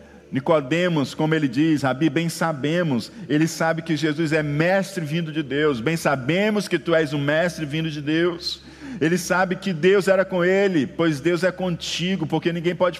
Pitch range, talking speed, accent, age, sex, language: 150-195 Hz, 185 wpm, Brazilian, 50-69, male, Portuguese